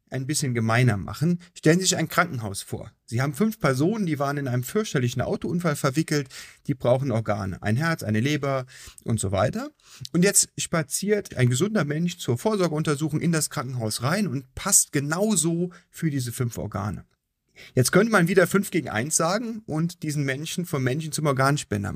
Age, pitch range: 40-59, 125-175 Hz